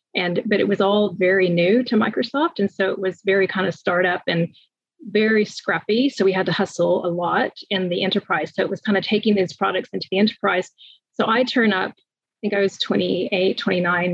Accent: American